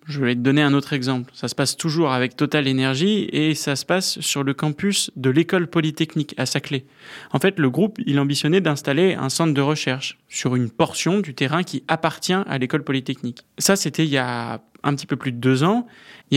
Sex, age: male, 20-39